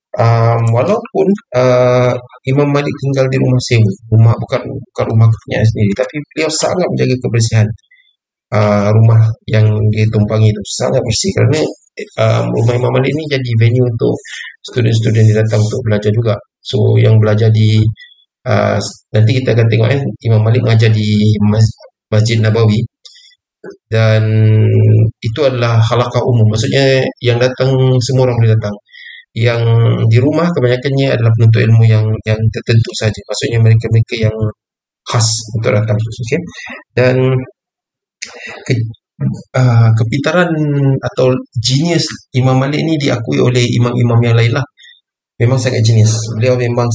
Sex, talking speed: male, 135 wpm